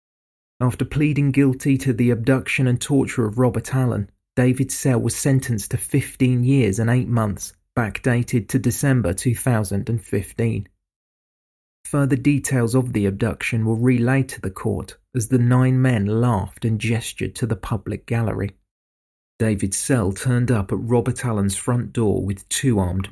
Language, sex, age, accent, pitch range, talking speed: English, male, 40-59, British, 100-125 Hz, 150 wpm